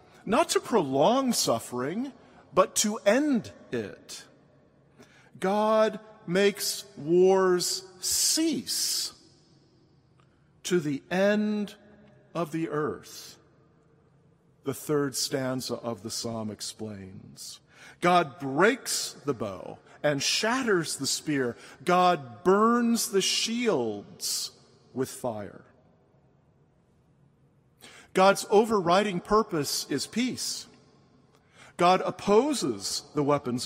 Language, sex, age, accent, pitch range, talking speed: English, male, 50-69, American, 140-215 Hz, 85 wpm